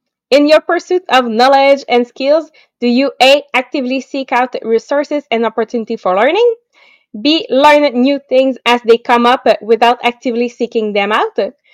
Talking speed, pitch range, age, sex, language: 160 wpm, 230-290 Hz, 20-39, female, English